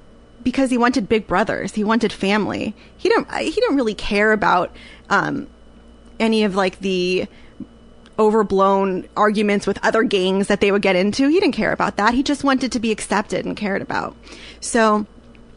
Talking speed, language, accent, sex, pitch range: 175 wpm, English, American, female, 200-245 Hz